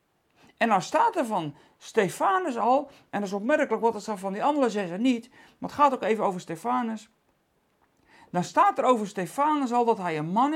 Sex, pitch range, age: male, 190-270 Hz, 40-59